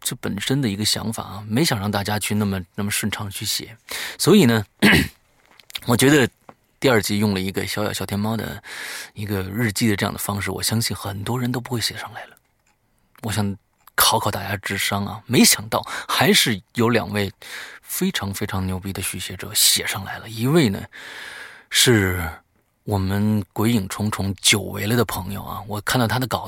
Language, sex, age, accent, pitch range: Chinese, male, 30-49, native, 100-120 Hz